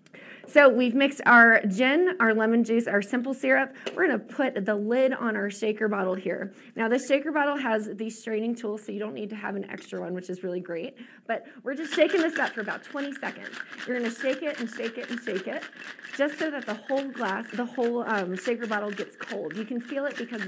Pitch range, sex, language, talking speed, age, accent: 210-265 Hz, female, English, 240 wpm, 20-39, American